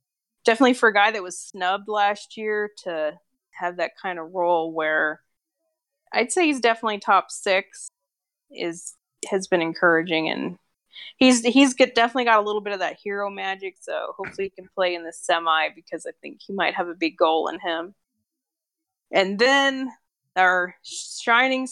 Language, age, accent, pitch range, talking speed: English, 20-39, American, 180-230 Hz, 170 wpm